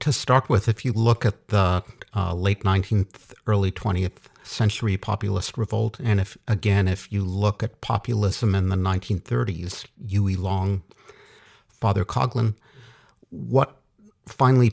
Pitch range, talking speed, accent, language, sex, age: 95-115 Hz, 135 wpm, American, English, male, 50-69